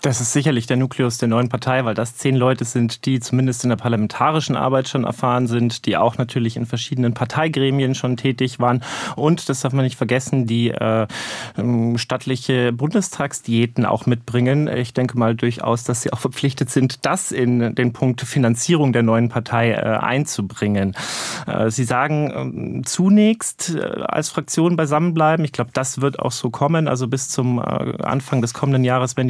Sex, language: male, German